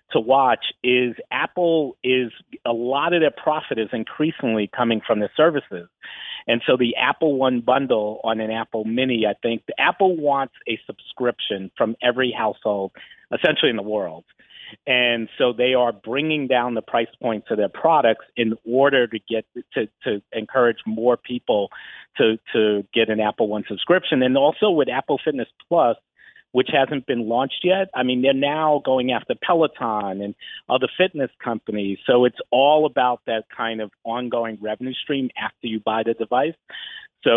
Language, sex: English, male